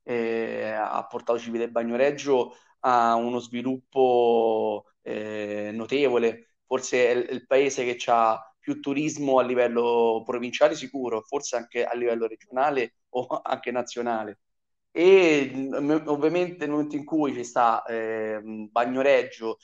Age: 30-49